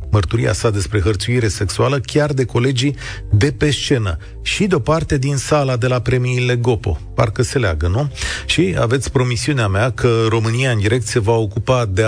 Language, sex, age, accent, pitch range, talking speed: Romanian, male, 40-59, native, 105-135 Hz, 175 wpm